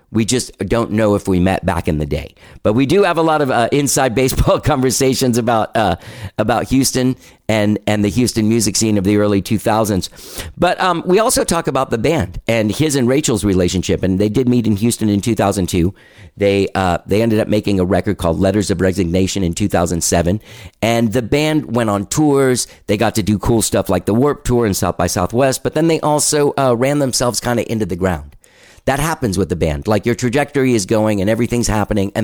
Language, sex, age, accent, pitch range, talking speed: English, male, 50-69, American, 90-120 Hz, 220 wpm